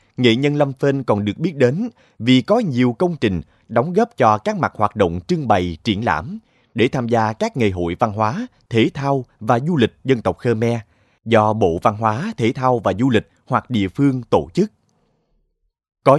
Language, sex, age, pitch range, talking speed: Vietnamese, male, 20-39, 100-130 Hz, 205 wpm